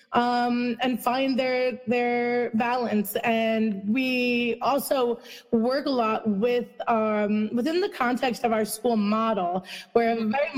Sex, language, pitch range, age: female, English, 225-260 Hz, 30-49